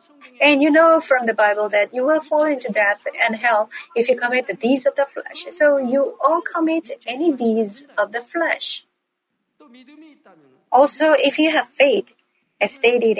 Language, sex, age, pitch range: Korean, female, 40-59, 220-290 Hz